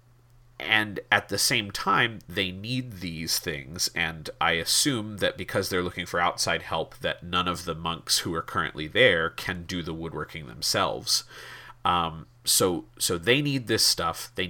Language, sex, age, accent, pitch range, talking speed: English, male, 30-49, American, 90-120 Hz, 170 wpm